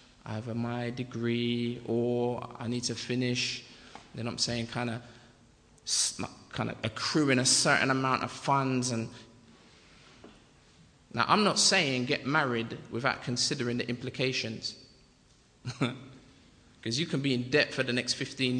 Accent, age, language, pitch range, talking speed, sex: British, 20-39, English, 120-145 Hz, 140 wpm, male